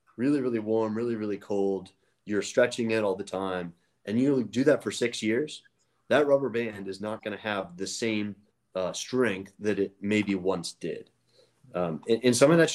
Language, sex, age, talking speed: English, male, 30-49, 200 wpm